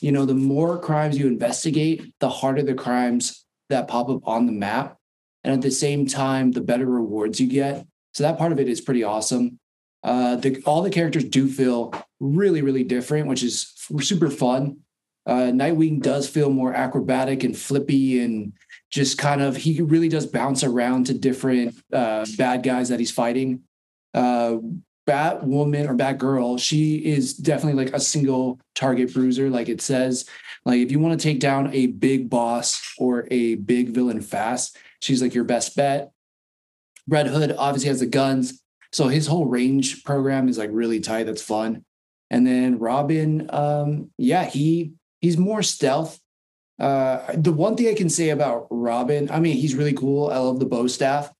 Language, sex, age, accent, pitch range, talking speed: English, male, 20-39, American, 125-145 Hz, 185 wpm